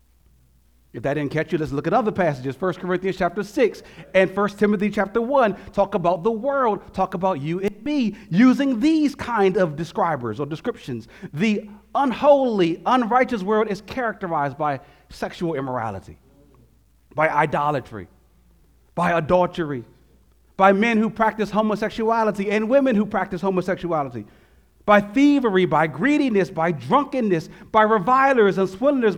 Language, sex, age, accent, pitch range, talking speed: English, male, 40-59, American, 145-230 Hz, 140 wpm